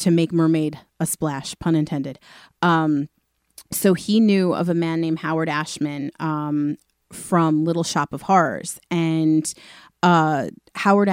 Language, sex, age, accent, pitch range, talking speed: English, female, 30-49, American, 155-180 Hz, 140 wpm